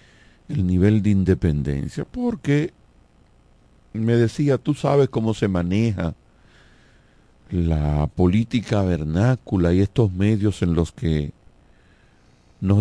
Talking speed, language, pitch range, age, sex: 105 wpm, Spanish, 90-125 Hz, 50-69, male